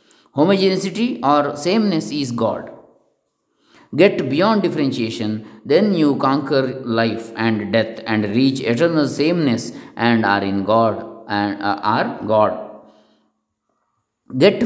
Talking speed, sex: 110 wpm, male